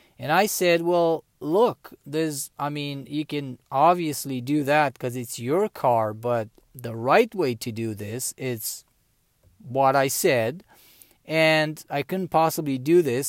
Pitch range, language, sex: 130-175 Hz, English, male